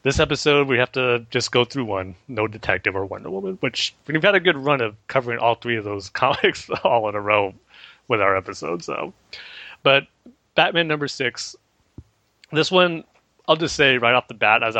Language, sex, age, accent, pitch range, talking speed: English, male, 30-49, American, 105-135 Hz, 200 wpm